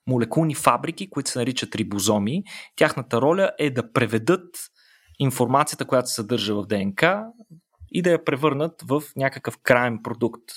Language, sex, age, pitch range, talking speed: Bulgarian, male, 20-39, 120-160 Hz, 140 wpm